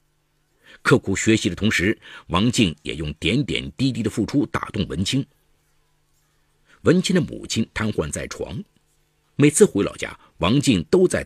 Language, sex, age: Chinese, male, 50-69